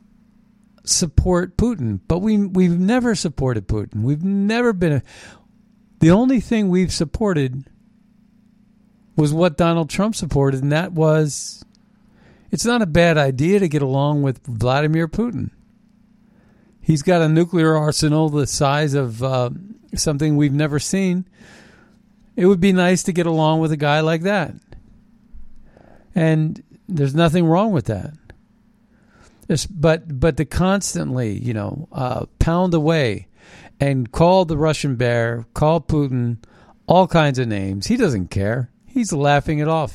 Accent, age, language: American, 50-69, English